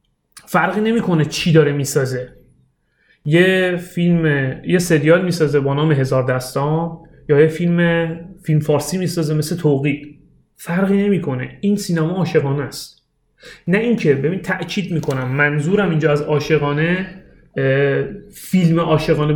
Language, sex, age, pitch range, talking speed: Persian, male, 30-49, 145-180 Hz, 140 wpm